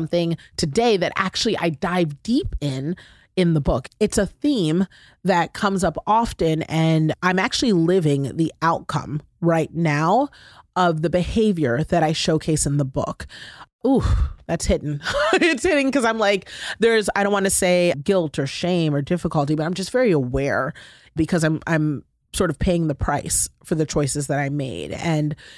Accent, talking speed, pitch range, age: American, 170 wpm, 150-185 Hz, 30-49